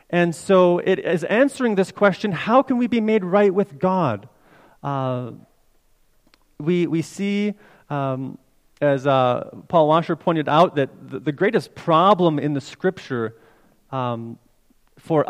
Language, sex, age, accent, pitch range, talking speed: English, male, 30-49, American, 135-180 Hz, 135 wpm